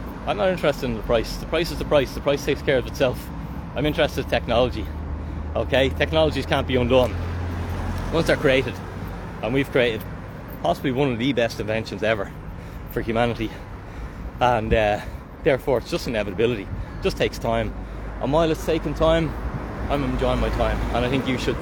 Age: 20-39